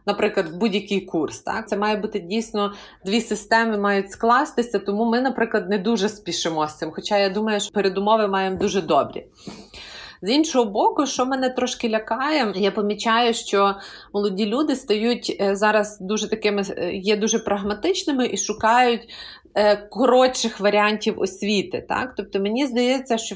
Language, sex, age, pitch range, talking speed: Ukrainian, female, 30-49, 200-240 Hz, 145 wpm